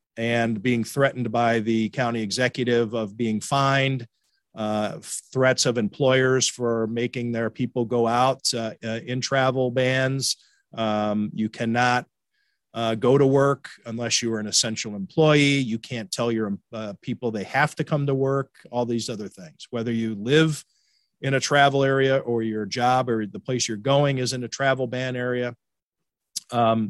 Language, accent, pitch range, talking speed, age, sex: English, American, 115-135 Hz, 170 wpm, 40-59, male